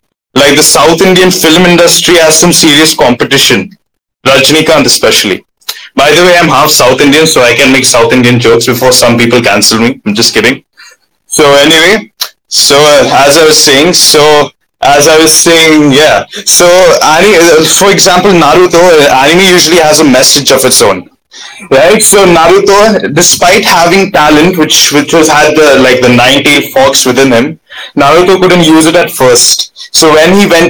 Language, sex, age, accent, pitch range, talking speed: English, male, 20-39, Indian, 135-170 Hz, 170 wpm